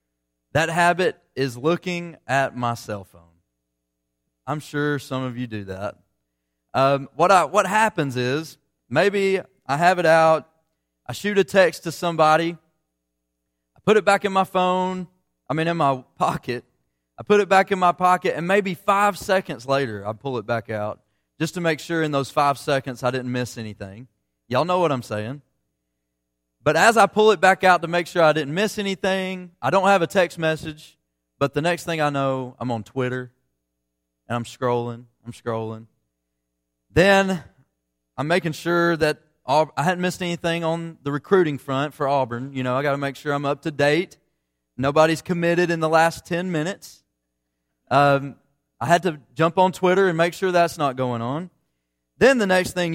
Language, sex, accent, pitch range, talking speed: English, male, American, 115-175 Hz, 185 wpm